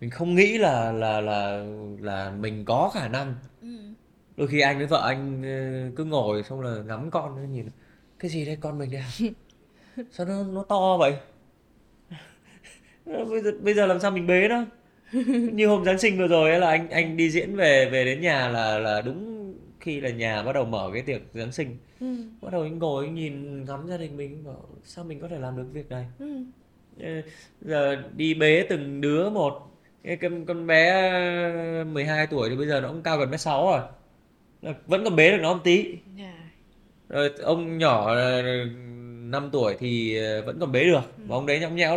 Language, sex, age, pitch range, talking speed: Vietnamese, male, 20-39, 130-175 Hz, 185 wpm